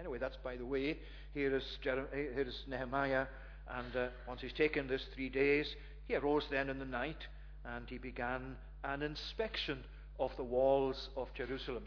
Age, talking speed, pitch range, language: 50-69, 165 wpm, 125-150 Hz, English